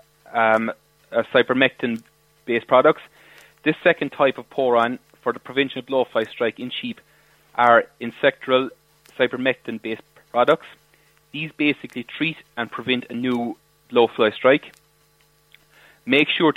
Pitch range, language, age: 115-135 Hz, English, 30-49